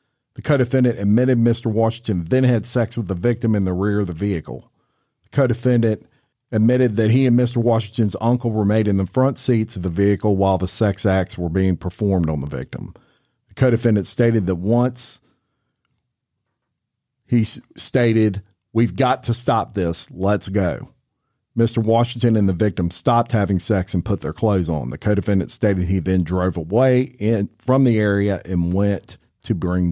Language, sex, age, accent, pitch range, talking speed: English, male, 50-69, American, 95-120 Hz, 175 wpm